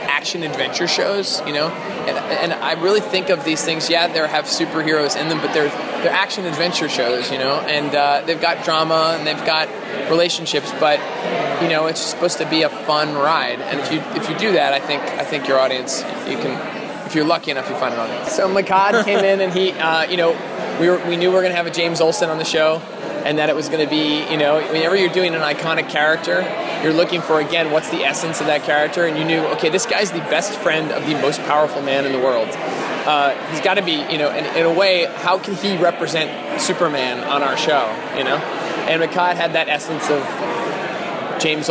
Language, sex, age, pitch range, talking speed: English, male, 20-39, 150-170 Hz, 230 wpm